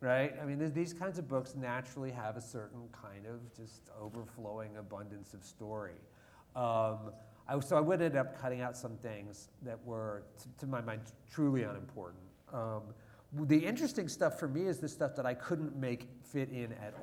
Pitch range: 110-135 Hz